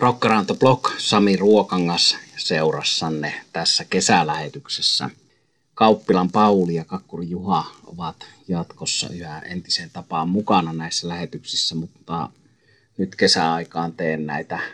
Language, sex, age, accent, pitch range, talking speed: Finnish, male, 30-49, native, 85-100 Hz, 100 wpm